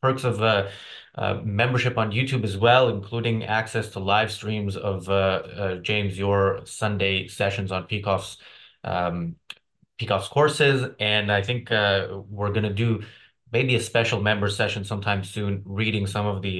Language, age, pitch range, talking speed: English, 20-39, 100-115 Hz, 165 wpm